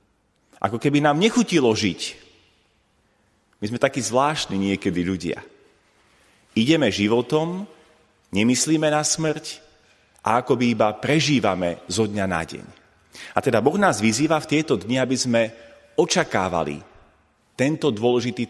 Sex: male